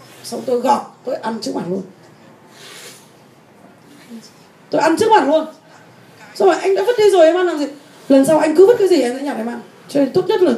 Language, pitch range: Vietnamese, 195-280 Hz